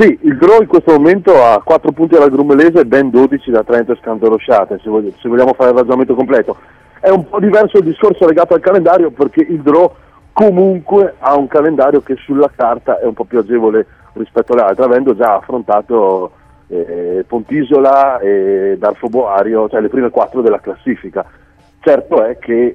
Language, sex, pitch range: Italian, male, 115-150 Hz